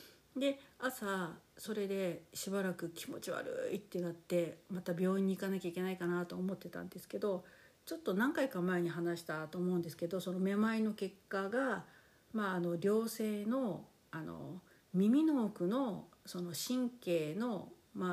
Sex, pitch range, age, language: female, 170-215 Hz, 50-69, Japanese